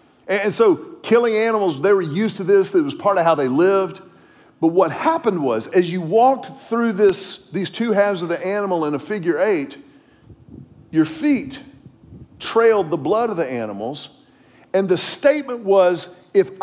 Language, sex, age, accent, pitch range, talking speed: English, male, 50-69, American, 160-230 Hz, 170 wpm